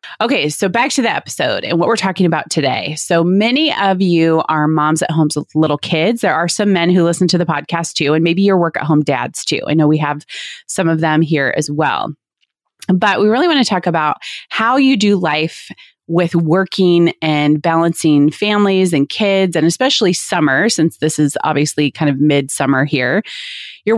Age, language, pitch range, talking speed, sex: 30-49, English, 155-200 Hz, 205 wpm, female